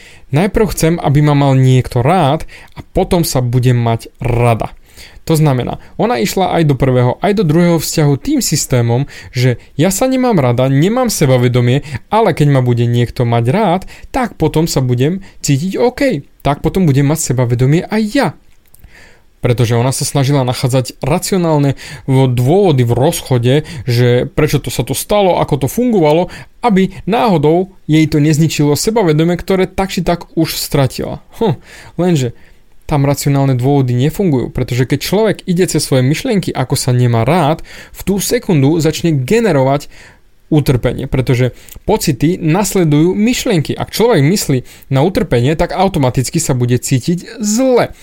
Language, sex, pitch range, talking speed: Slovak, male, 130-180 Hz, 155 wpm